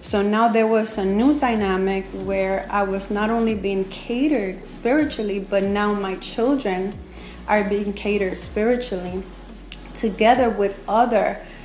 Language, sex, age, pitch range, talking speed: English, female, 30-49, 195-220 Hz, 135 wpm